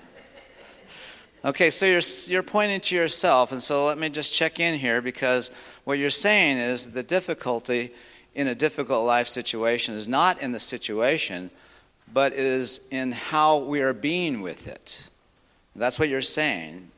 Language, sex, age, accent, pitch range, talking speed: English, male, 50-69, American, 115-150 Hz, 165 wpm